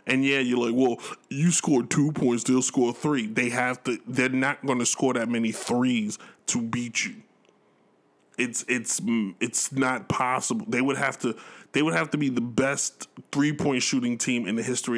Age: 20-39